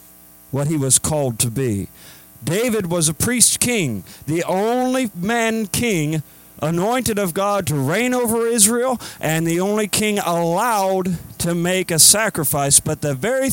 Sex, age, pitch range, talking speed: male, 50-69, 115-175 Hz, 150 wpm